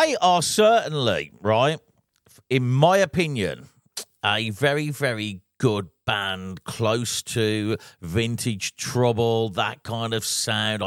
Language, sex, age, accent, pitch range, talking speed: English, male, 50-69, British, 110-150 Hz, 110 wpm